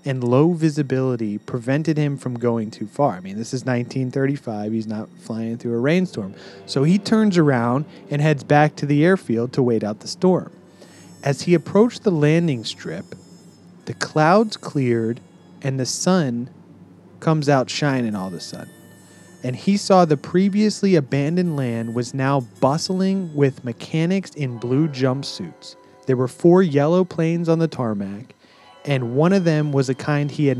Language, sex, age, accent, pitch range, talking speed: English, male, 30-49, American, 120-160 Hz, 170 wpm